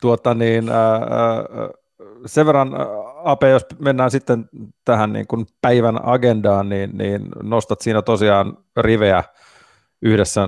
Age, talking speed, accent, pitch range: 30-49, 130 wpm, native, 95-115 Hz